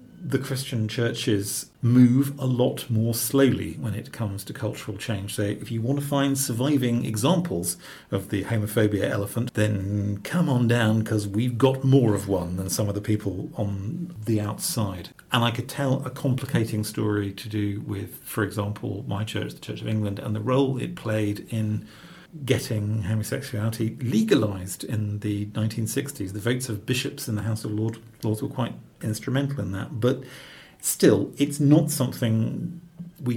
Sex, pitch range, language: male, 105-130 Hz, English